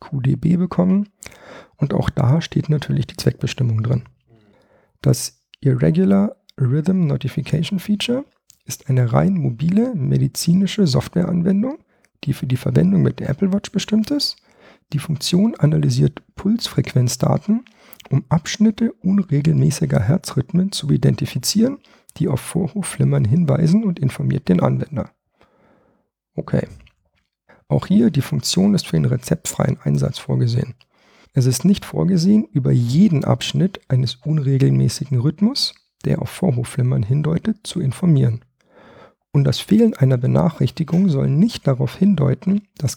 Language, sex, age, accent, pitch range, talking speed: German, male, 50-69, German, 135-190 Hz, 120 wpm